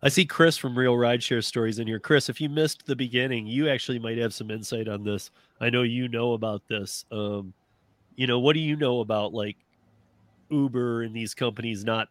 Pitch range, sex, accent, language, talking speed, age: 105-130 Hz, male, American, English, 215 wpm, 30-49